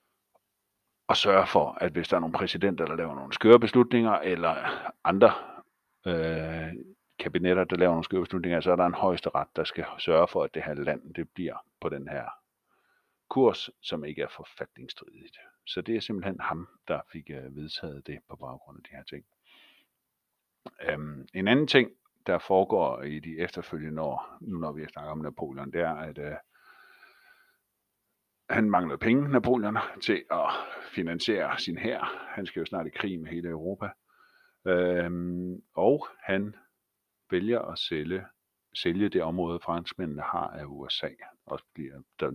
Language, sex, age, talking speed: Danish, male, 50-69, 165 wpm